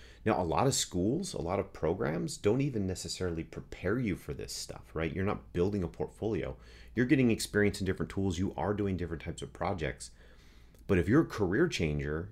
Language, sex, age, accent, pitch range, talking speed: English, male, 30-49, American, 75-105 Hz, 205 wpm